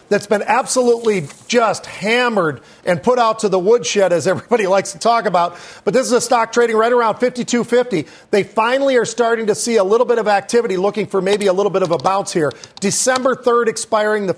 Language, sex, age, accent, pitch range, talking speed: English, male, 40-59, American, 190-225 Hz, 215 wpm